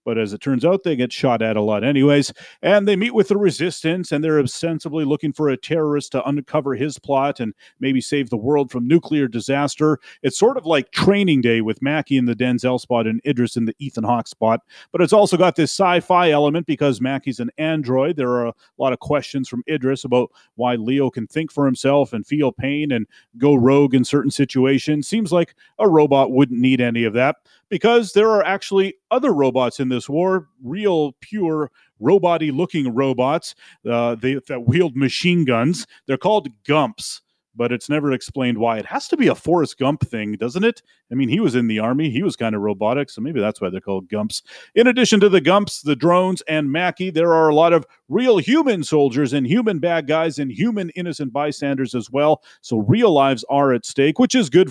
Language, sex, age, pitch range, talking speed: English, male, 30-49, 125-165 Hz, 215 wpm